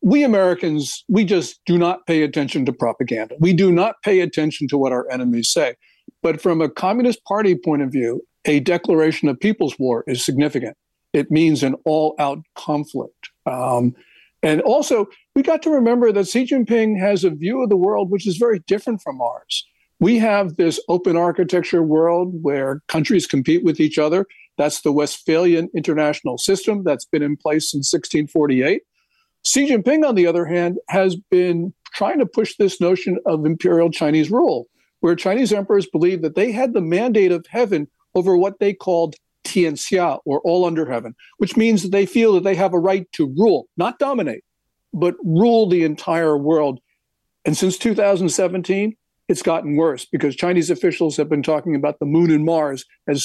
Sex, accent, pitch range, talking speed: male, American, 150-195 Hz, 180 wpm